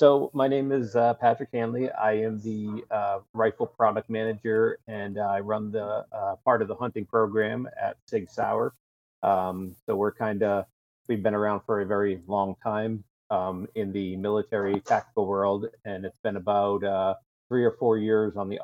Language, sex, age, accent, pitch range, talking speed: English, male, 30-49, American, 95-110 Hz, 185 wpm